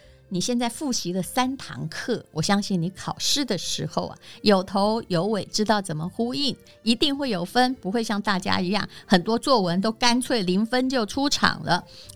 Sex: female